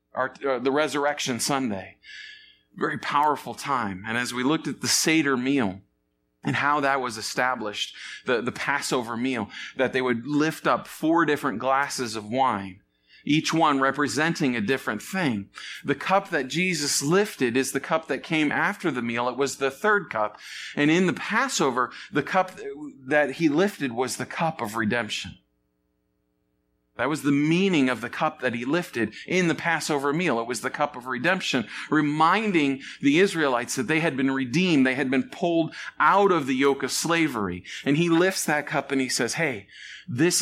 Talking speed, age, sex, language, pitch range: 180 wpm, 40-59, male, English, 120-160 Hz